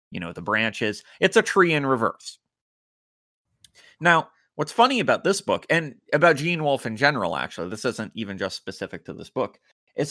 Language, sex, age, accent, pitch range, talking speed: English, male, 30-49, American, 95-135 Hz, 185 wpm